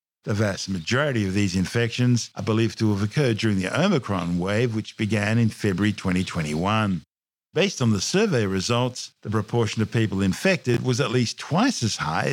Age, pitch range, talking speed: 50-69, 105-135 Hz, 175 wpm